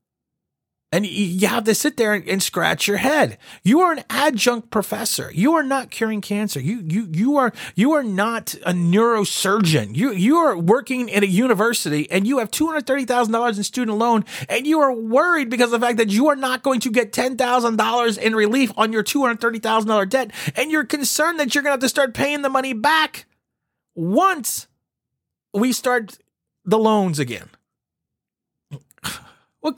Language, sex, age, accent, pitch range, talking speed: English, male, 30-49, American, 200-265 Hz, 175 wpm